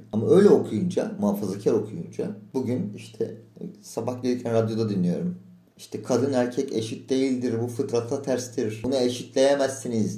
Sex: male